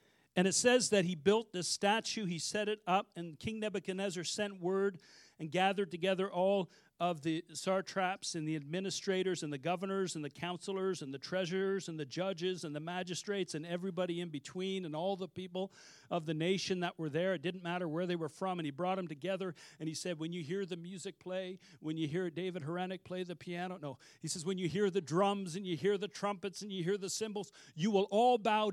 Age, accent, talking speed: 50-69, American, 225 wpm